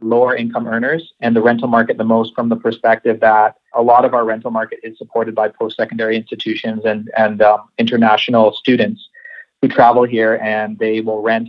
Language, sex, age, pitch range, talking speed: English, male, 30-49, 110-120 Hz, 195 wpm